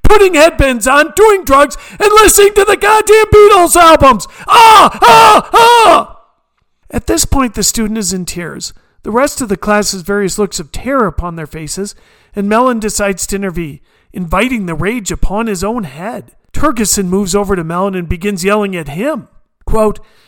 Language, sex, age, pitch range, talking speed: English, male, 40-59, 185-310 Hz, 175 wpm